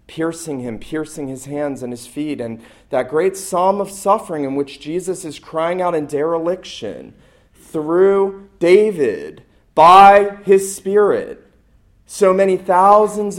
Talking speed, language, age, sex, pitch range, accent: 135 wpm, English, 40-59, male, 145-175 Hz, American